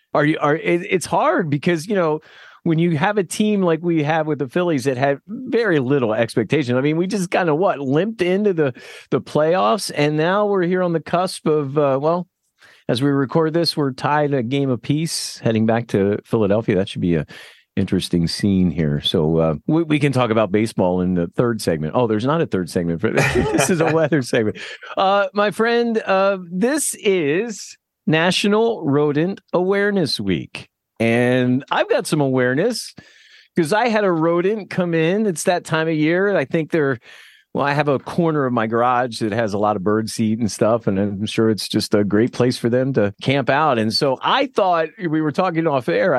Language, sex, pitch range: English, male, 125-180 Hz